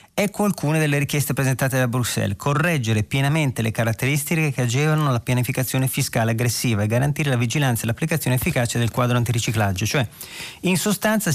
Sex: male